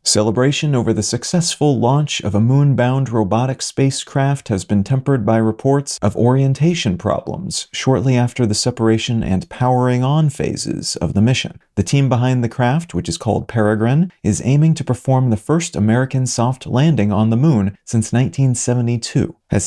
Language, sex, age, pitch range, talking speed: English, male, 40-59, 110-135 Hz, 160 wpm